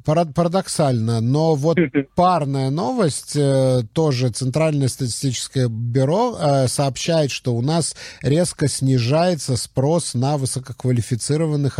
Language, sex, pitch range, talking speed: Russian, male, 120-140 Hz, 90 wpm